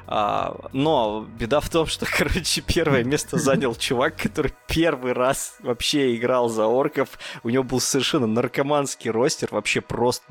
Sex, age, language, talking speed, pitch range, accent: male, 20-39, Russian, 150 wpm, 115-145 Hz, native